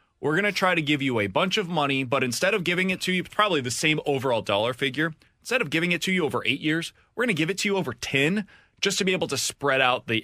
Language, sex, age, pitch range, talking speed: English, male, 20-39, 115-160 Hz, 295 wpm